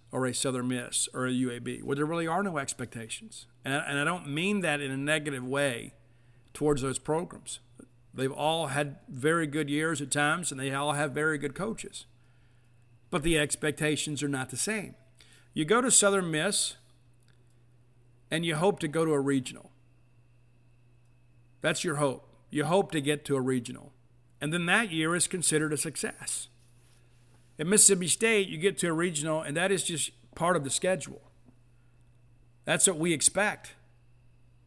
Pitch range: 120-165 Hz